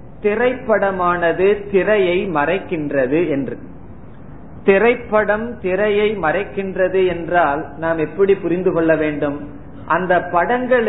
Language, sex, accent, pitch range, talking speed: Tamil, male, native, 155-205 Hz, 85 wpm